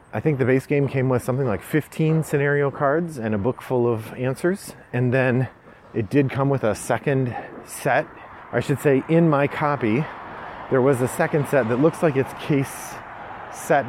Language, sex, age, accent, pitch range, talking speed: English, male, 30-49, American, 110-140 Hz, 190 wpm